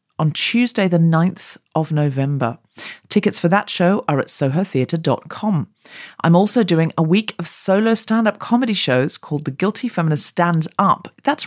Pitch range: 150-215 Hz